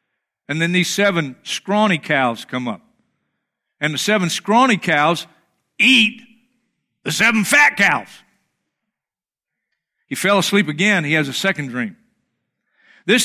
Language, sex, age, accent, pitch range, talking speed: English, male, 50-69, American, 185-240 Hz, 125 wpm